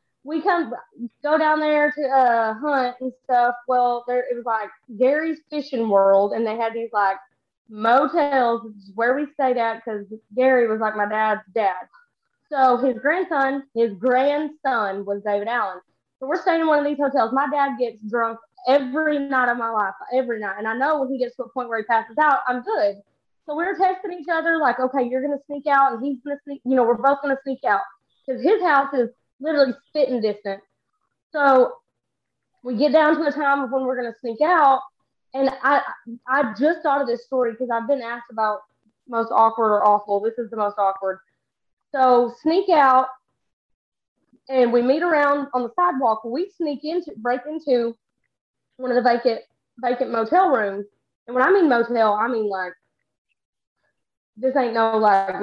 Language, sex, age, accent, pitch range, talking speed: English, female, 20-39, American, 225-280 Hz, 195 wpm